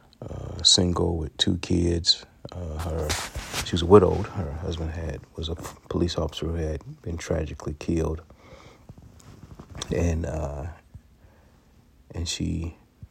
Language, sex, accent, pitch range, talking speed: English, male, American, 85-100 Hz, 125 wpm